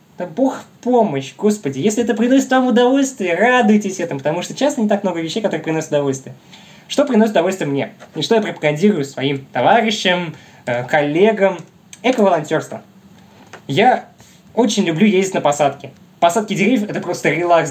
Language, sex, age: Russian, male, 20-39